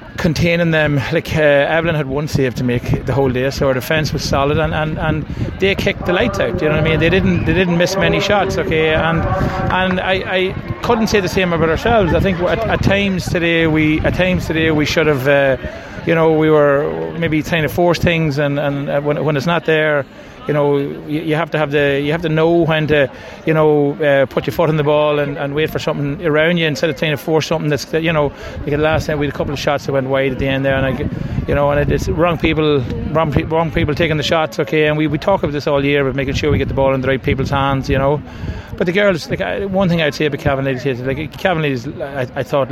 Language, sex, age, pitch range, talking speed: English, male, 30-49, 140-165 Hz, 270 wpm